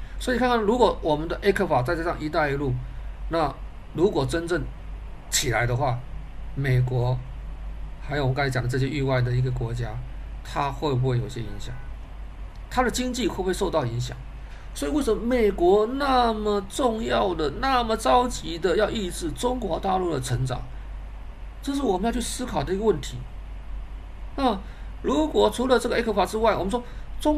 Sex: male